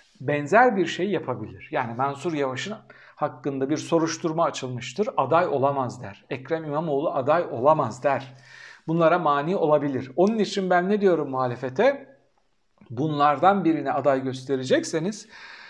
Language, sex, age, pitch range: Turkish, male, 60-79, 145-215 Hz